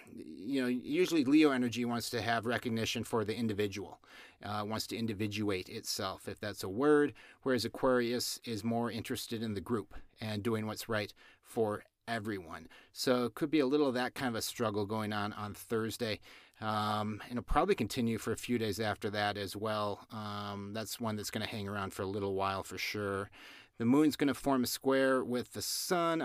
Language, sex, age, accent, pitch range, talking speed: English, male, 30-49, American, 105-130 Hz, 200 wpm